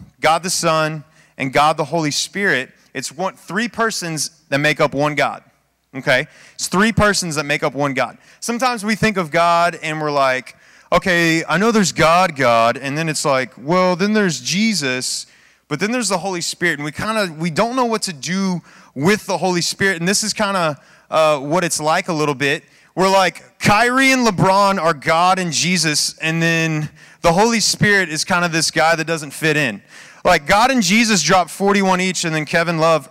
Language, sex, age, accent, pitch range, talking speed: English, male, 30-49, American, 155-190 Hz, 205 wpm